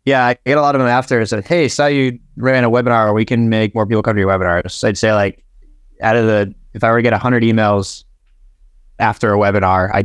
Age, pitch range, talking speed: 20-39, 105-125 Hz, 270 wpm